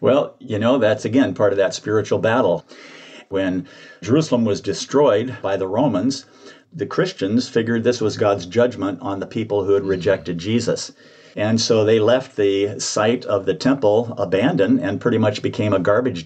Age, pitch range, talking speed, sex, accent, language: 50-69, 100-125 Hz, 175 wpm, male, American, English